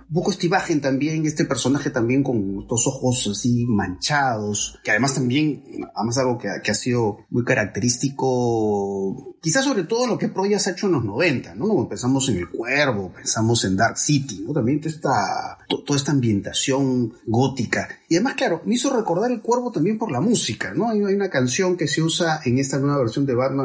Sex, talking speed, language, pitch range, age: male, 195 wpm, Spanish, 110-145 Hz, 30-49